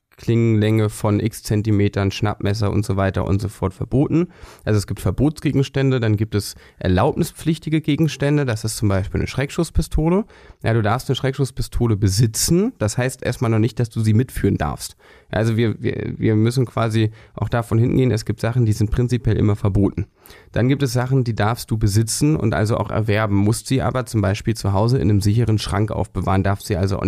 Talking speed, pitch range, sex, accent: 195 wpm, 100-120 Hz, male, German